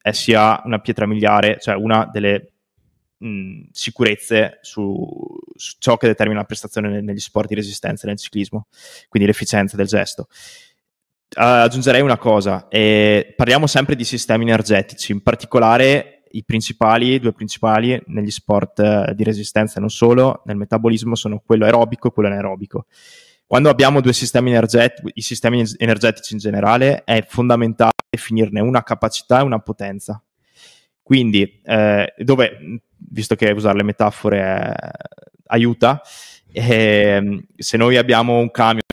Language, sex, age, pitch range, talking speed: Italian, male, 20-39, 105-120 Hz, 140 wpm